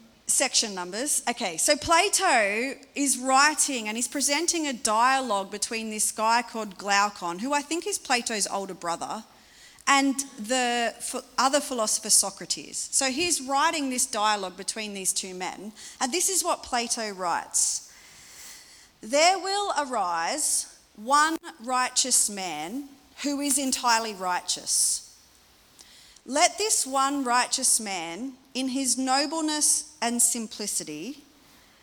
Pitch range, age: 215-285 Hz, 40-59